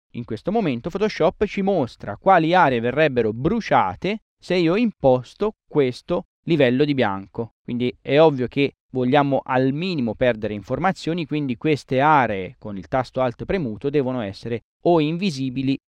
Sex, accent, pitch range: male, native, 120-160 Hz